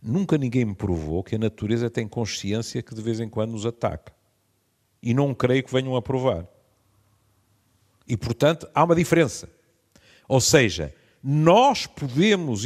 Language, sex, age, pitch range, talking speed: Portuguese, male, 50-69, 95-130 Hz, 150 wpm